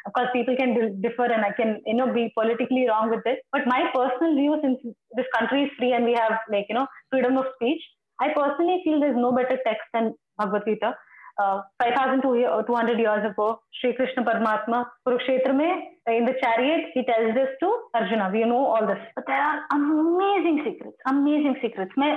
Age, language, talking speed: 20-39, Hindi, 180 wpm